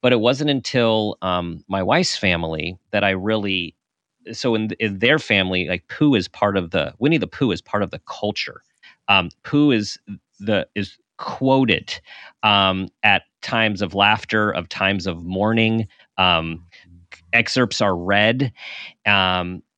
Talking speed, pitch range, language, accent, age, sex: 150 wpm, 95-120 Hz, English, American, 40-59, male